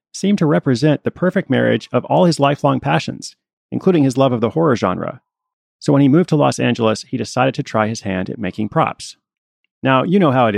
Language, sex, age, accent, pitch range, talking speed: English, male, 30-49, American, 115-150 Hz, 220 wpm